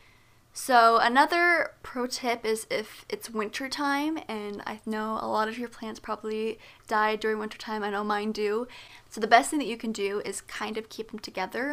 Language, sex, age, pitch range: English, female, 20-39, 210-255 Hz